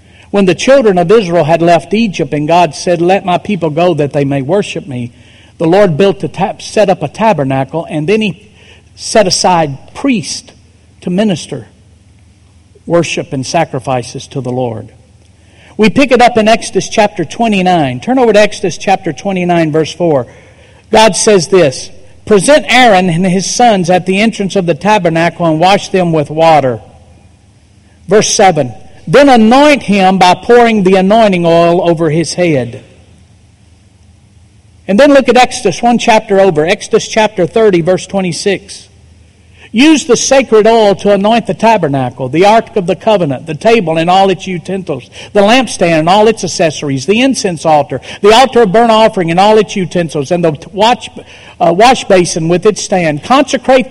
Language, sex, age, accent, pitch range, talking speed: English, male, 50-69, American, 140-215 Hz, 165 wpm